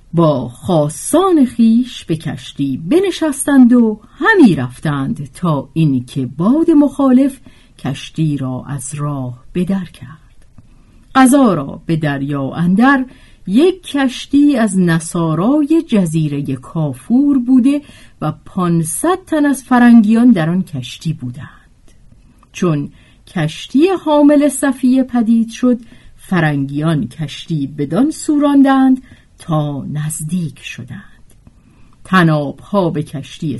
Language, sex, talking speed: Persian, female, 105 wpm